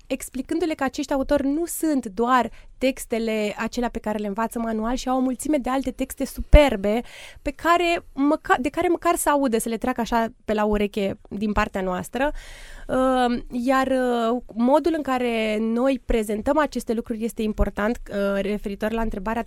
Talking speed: 155 wpm